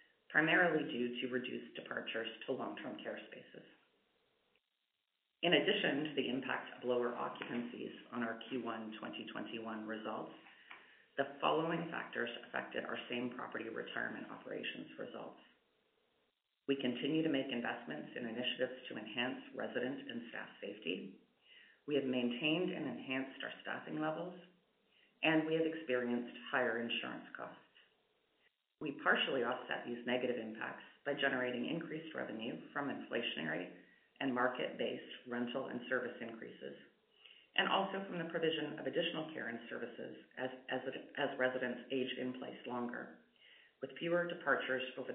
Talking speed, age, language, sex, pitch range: 130 wpm, 40-59, English, female, 120-155 Hz